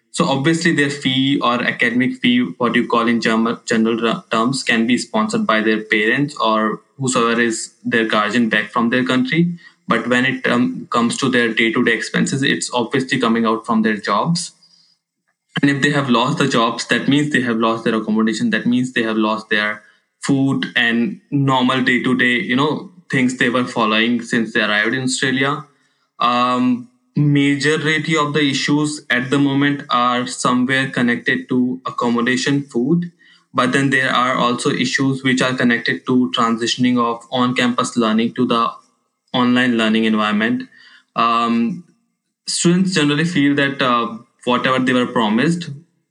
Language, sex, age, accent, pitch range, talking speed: English, male, 20-39, Indian, 115-145 Hz, 160 wpm